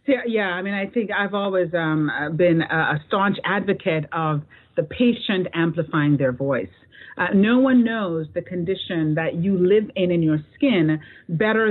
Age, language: 40-59, English